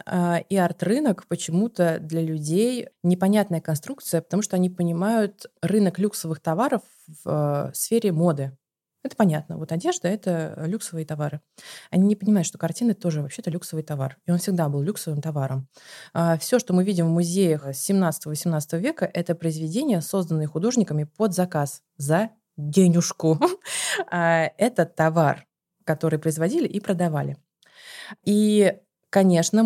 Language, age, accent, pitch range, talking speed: Russian, 20-39, native, 160-205 Hz, 130 wpm